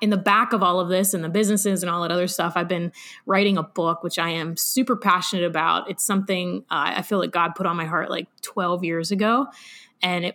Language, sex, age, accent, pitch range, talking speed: English, female, 20-39, American, 190-240 Hz, 250 wpm